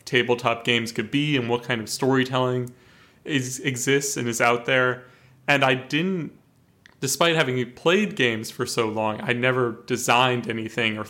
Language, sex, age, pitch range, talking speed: English, male, 20-39, 115-135 Hz, 155 wpm